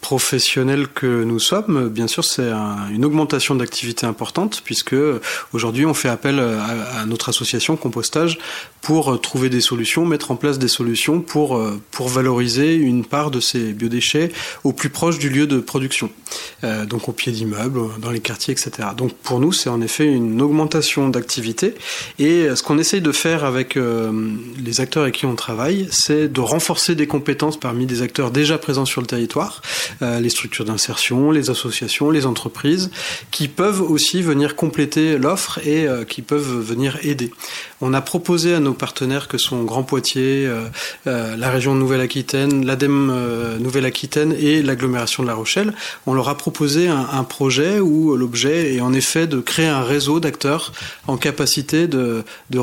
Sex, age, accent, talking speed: male, 30-49, French, 175 wpm